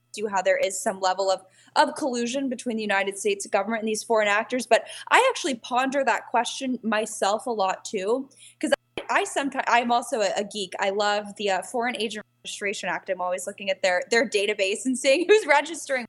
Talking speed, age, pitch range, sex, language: 210 wpm, 10-29, 200-275 Hz, female, English